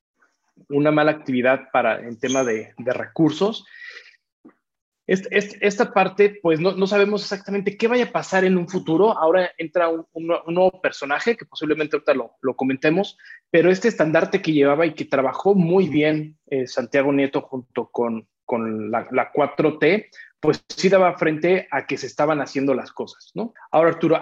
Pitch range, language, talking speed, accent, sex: 135-185 Hz, Spanish, 175 wpm, Mexican, male